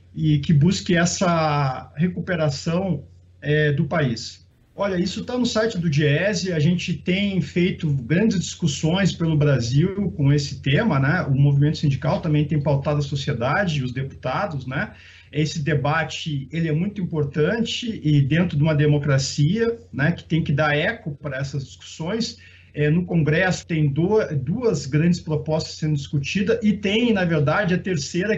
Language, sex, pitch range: Portuguese, male, 150-195 Hz